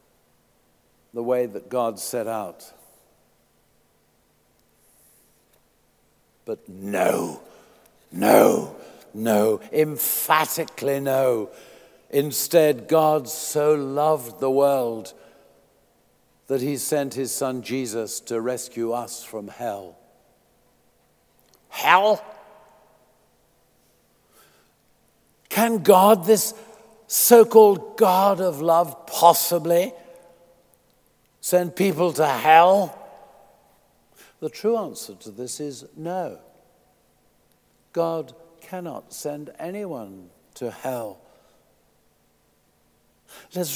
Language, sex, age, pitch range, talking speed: English, male, 60-79, 130-190 Hz, 80 wpm